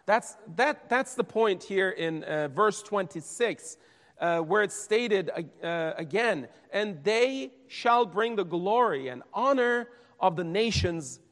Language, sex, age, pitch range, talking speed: English, male, 40-59, 165-230 Hz, 140 wpm